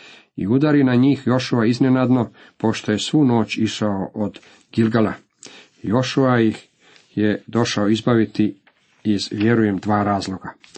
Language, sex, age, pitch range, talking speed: Croatian, male, 40-59, 105-130 Hz, 120 wpm